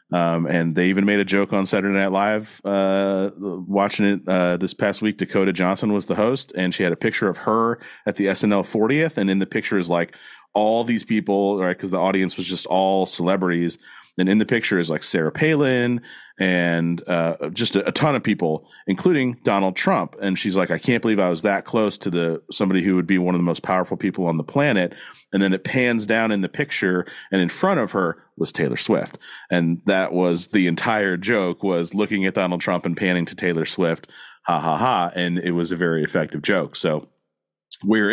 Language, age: English, 40-59